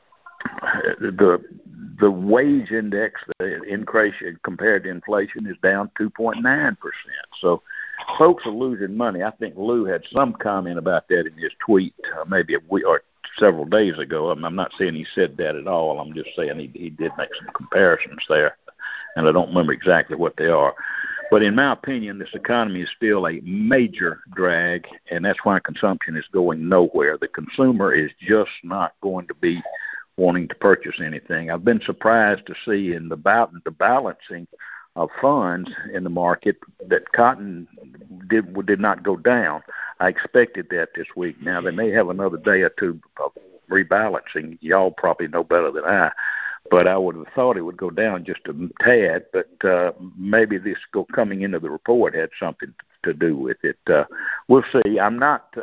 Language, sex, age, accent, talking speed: English, male, 60-79, American, 180 wpm